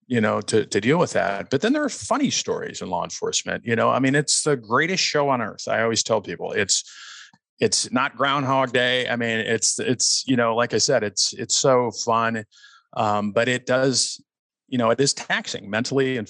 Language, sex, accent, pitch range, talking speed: English, male, American, 100-120 Hz, 215 wpm